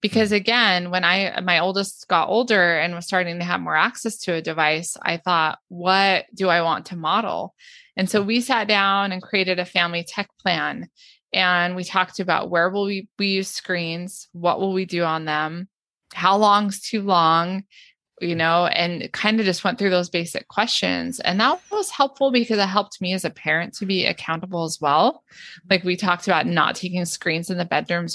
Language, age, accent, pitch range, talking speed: English, 20-39, American, 175-210 Hz, 200 wpm